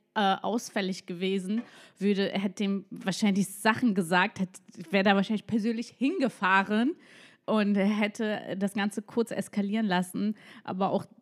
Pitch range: 190-235 Hz